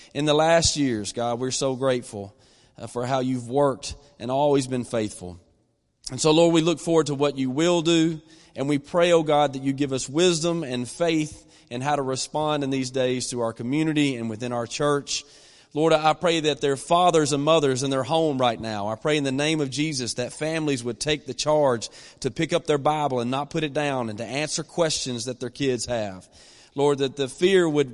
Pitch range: 125-155 Hz